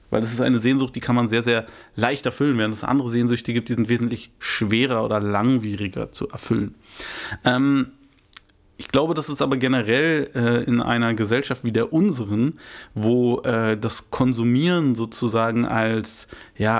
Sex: male